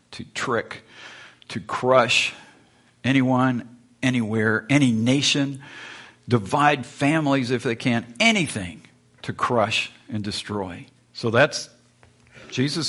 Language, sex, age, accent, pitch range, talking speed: English, male, 50-69, American, 110-135 Hz, 100 wpm